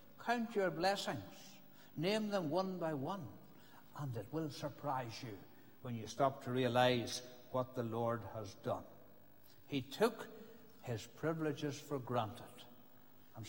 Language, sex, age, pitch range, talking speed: English, male, 60-79, 130-170 Hz, 135 wpm